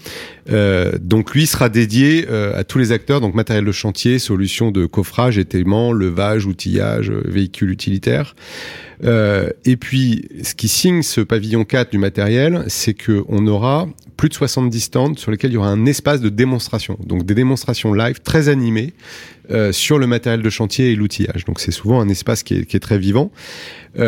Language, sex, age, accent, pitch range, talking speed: French, male, 30-49, French, 100-125 Hz, 185 wpm